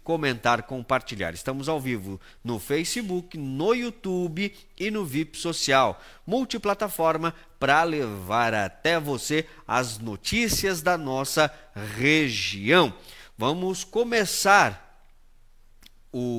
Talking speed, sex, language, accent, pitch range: 95 wpm, male, Portuguese, Brazilian, 120-165 Hz